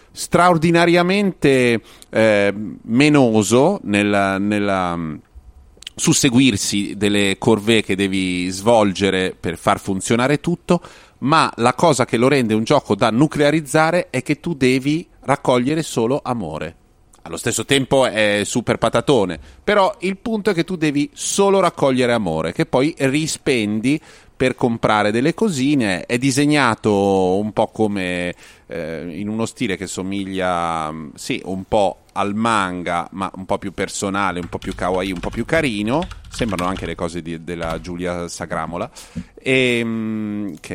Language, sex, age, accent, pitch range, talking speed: Italian, male, 30-49, native, 95-145 Hz, 135 wpm